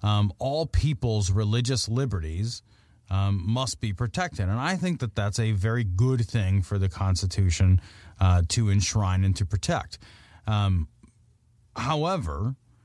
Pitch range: 105-150 Hz